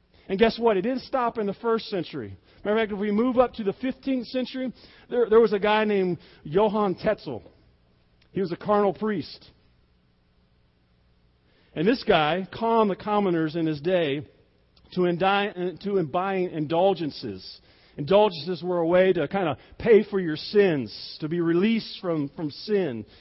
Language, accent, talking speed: English, American, 170 wpm